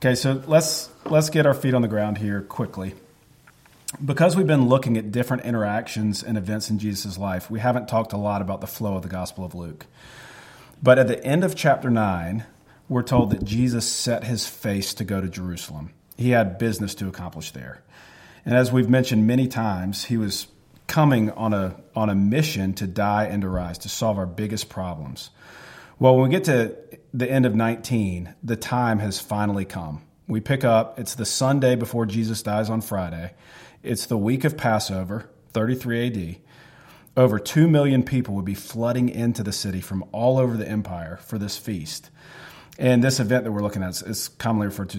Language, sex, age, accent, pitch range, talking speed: English, male, 40-59, American, 100-125 Hz, 195 wpm